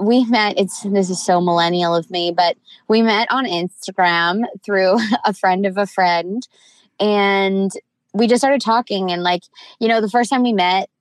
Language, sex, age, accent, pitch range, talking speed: English, female, 20-39, American, 180-215 Hz, 185 wpm